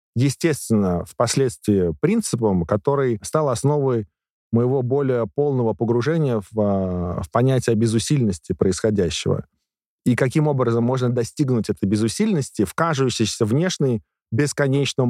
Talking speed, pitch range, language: 100 wpm, 115-150 Hz, Russian